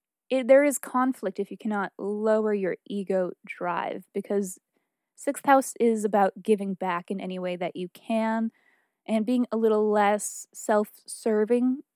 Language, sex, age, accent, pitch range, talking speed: English, female, 20-39, American, 200-235 Hz, 150 wpm